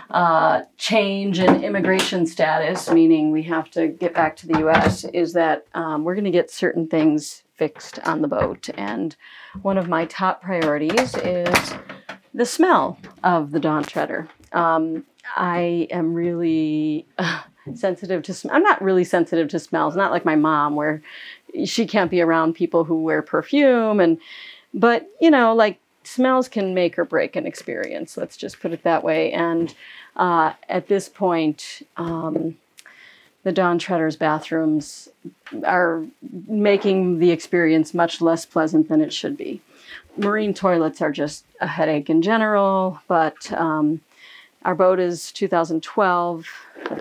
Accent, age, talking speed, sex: American, 40-59, 155 wpm, female